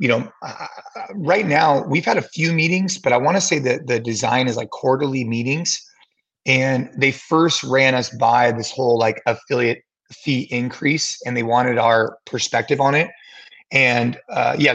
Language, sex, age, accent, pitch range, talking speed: English, male, 30-49, American, 120-140 Hz, 180 wpm